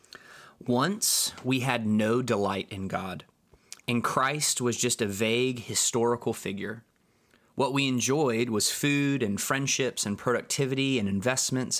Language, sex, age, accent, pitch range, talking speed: English, male, 20-39, American, 110-135 Hz, 130 wpm